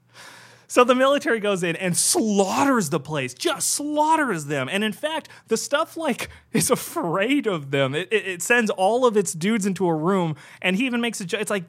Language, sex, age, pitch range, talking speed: English, male, 30-49, 140-210 Hz, 210 wpm